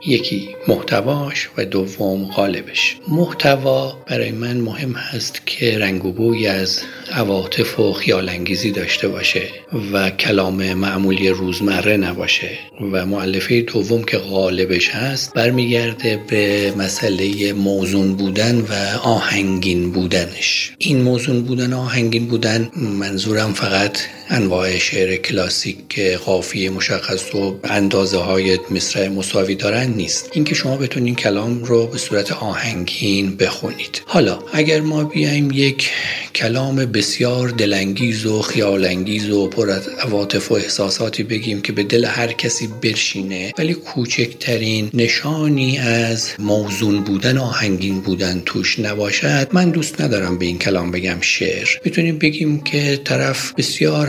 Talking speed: 125 wpm